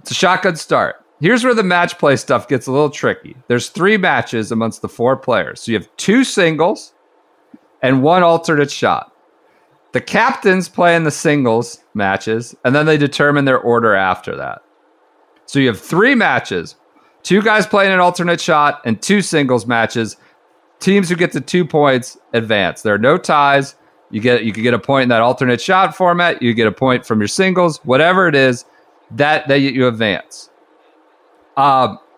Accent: American